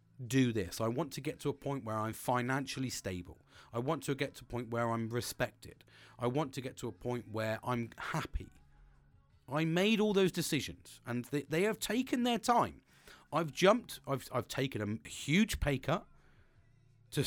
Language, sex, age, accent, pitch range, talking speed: English, male, 40-59, British, 105-145 Hz, 190 wpm